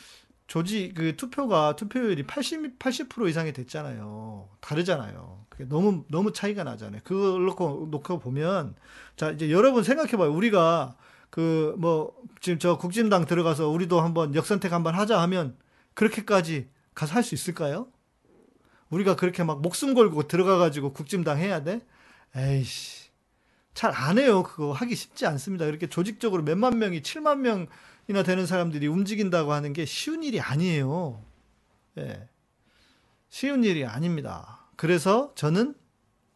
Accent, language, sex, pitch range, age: native, Korean, male, 150-205 Hz, 40-59